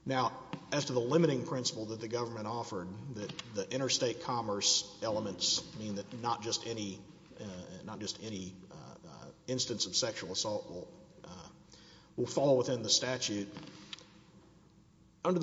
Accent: American